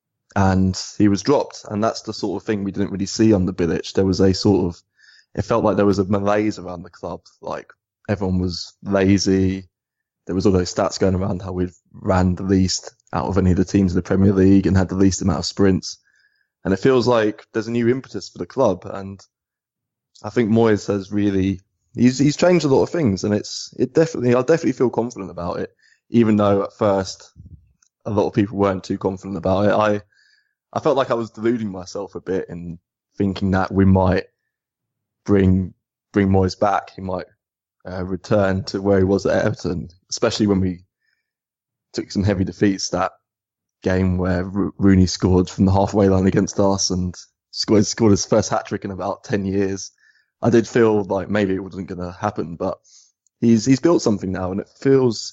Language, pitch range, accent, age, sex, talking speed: English, 95-110 Hz, British, 20-39, male, 205 wpm